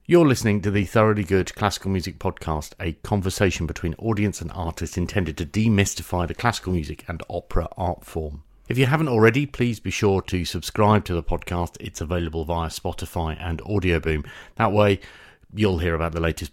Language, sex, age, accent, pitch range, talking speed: English, male, 40-59, British, 85-105 Hz, 180 wpm